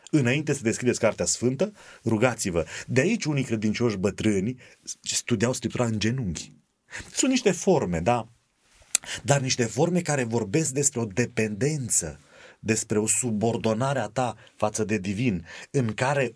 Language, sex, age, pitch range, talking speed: Romanian, male, 30-49, 110-150 Hz, 135 wpm